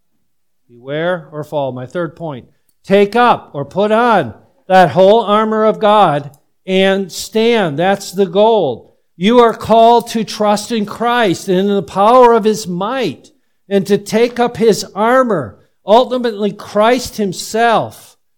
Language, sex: English, male